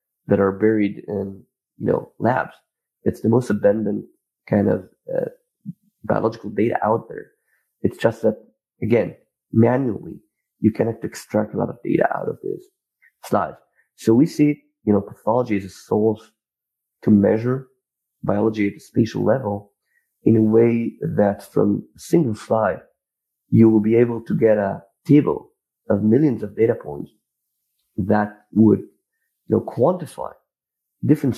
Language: English